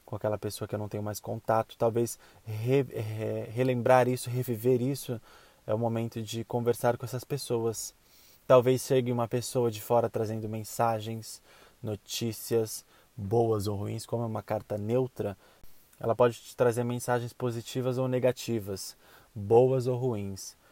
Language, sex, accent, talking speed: Portuguese, male, Brazilian, 150 wpm